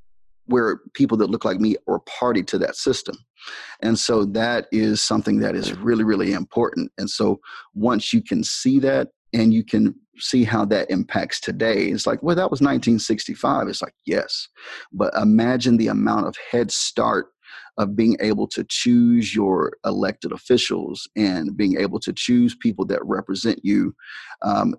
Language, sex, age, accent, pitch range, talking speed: English, male, 30-49, American, 105-130 Hz, 170 wpm